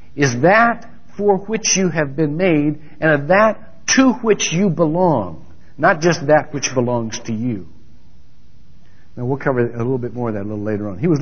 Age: 60-79